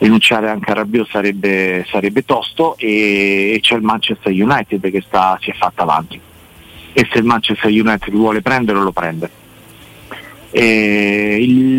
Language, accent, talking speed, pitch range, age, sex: Italian, native, 155 wpm, 100-115 Hz, 40-59, male